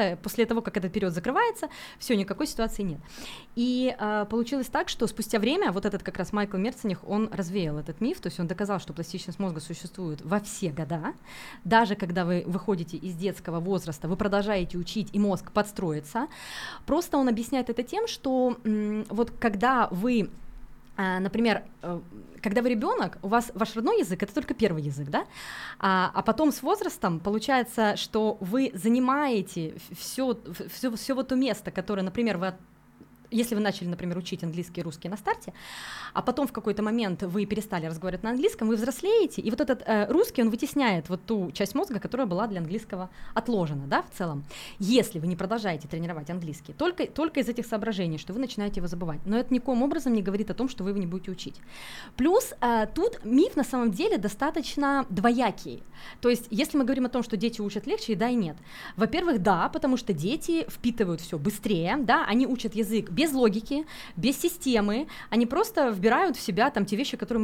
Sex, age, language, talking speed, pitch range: female, 20-39, Russian, 190 wpm, 190-250 Hz